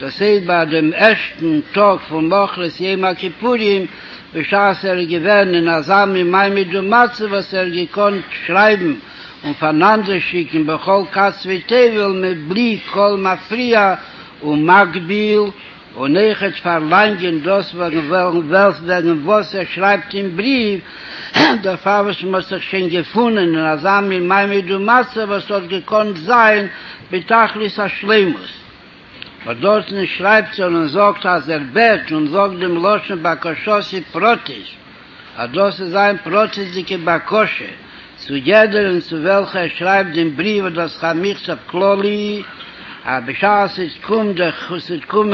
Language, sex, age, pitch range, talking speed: English, male, 60-79, 175-205 Hz, 130 wpm